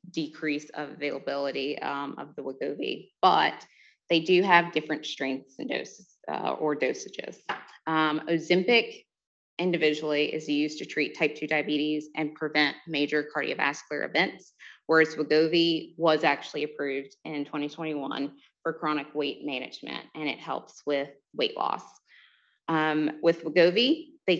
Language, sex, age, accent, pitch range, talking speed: English, female, 20-39, American, 145-165 Hz, 135 wpm